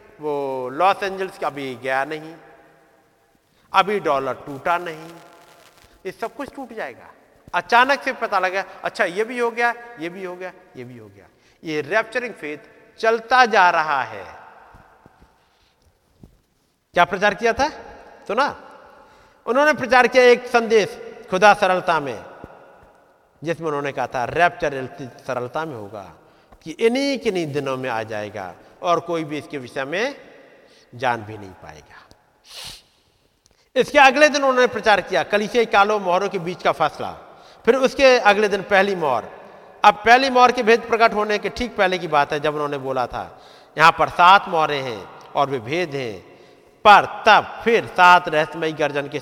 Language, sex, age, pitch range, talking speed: Hindi, male, 50-69, 140-220 Hz, 155 wpm